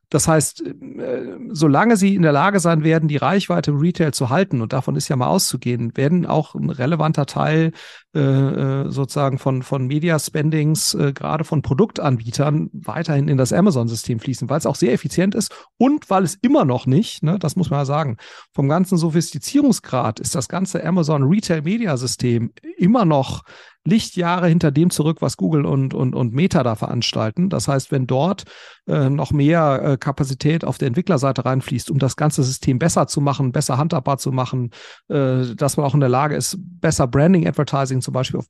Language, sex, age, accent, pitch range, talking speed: German, male, 40-59, German, 135-165 Hz, 180 wpm